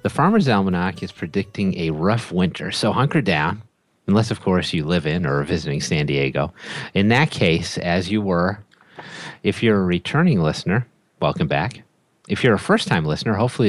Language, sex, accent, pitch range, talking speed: English, male, American, 85-115 Hz, 180 wpm